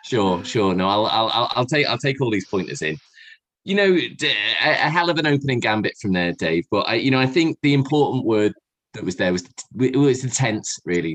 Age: 20-39